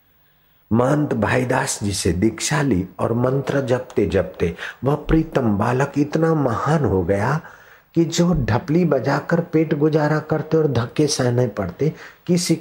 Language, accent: Hindi, native